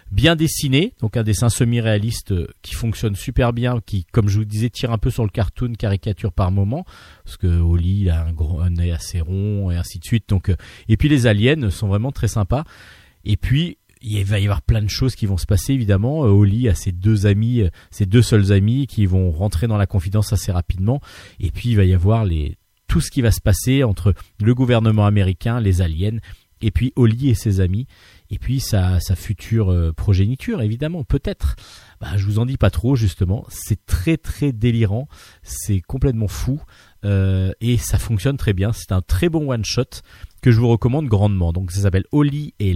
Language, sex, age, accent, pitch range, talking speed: French, male, 40-59, French, 95-120 Hz, 210 wpm